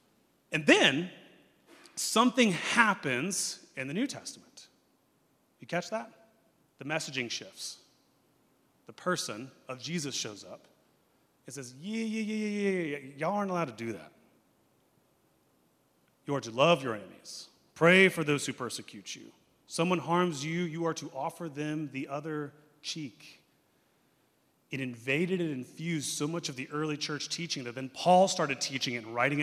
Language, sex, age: English, male, 30-49